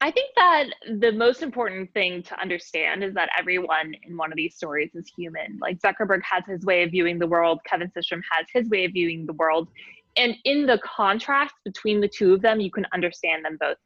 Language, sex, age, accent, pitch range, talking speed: English, female, 20-39, American, 175-215 Hz, 220 wpm